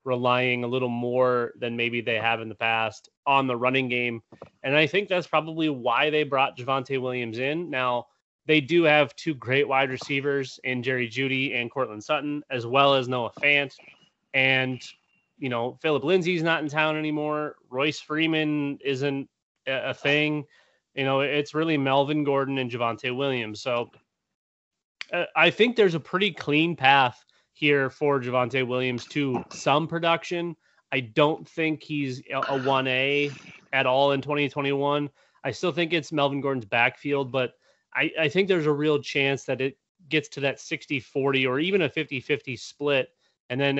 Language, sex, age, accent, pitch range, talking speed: English, male, 20-39, American, 125-150 Hz, 165 wpm